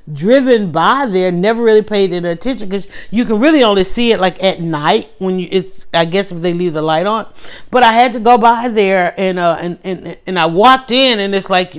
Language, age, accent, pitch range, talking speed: English, 30-49, American, 165-220 Hz, 240 wpm